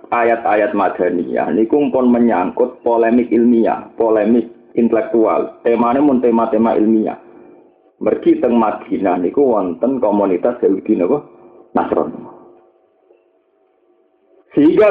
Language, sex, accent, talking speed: Indonesian, male, native, 90 wpm